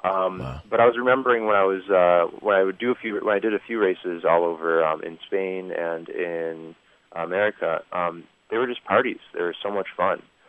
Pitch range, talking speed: 85-100 Hz, 215 wpm